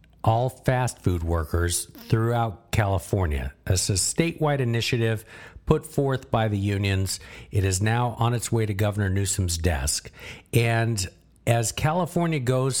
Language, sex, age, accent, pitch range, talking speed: English, male, 50-69, American, 95-125 Hz, 135 wpm